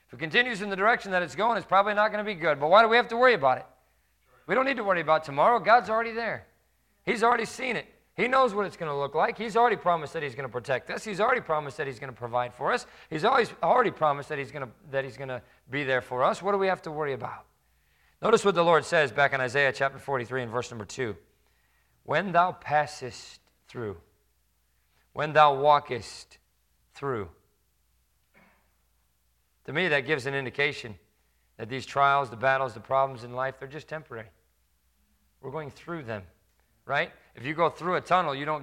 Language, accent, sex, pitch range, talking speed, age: English, American, male, 120-165 Hz, 220 wpm, 40-59